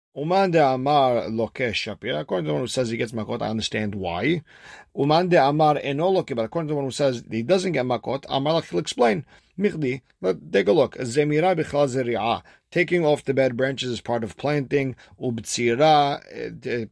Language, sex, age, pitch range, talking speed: English, male, 40-59, 110-145 Hz, 165 wpm